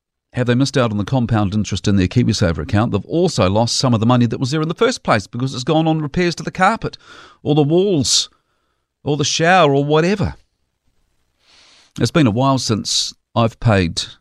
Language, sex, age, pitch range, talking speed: English, male, 40-59, 100-135 Hz, 205 wpm